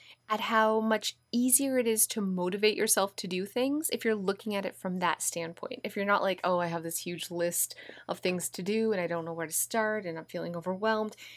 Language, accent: English, American